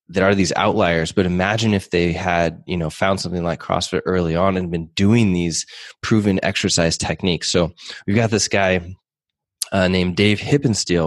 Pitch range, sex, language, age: 85-100 Hz, male, English, 20-39